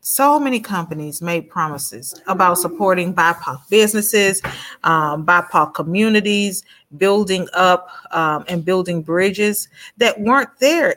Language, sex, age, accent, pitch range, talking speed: English, female, 40-59, American, 175-225 Hz, 115 wpm